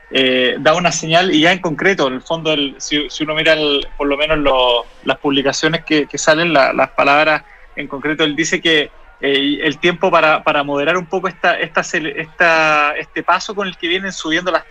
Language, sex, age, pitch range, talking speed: Spanish, male, 20-39, 150-180 Hz, 215 wpm